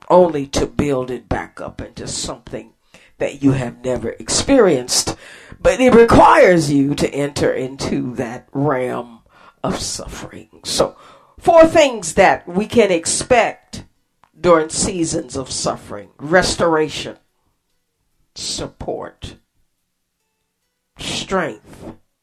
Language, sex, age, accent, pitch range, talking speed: English, female, 50-69, American, 125-180 Hz, 105 wpm